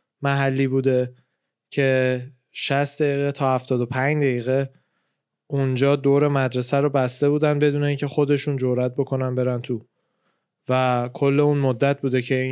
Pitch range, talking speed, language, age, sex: 120-140 Hz, 145 wpm, Persian, 20-39, male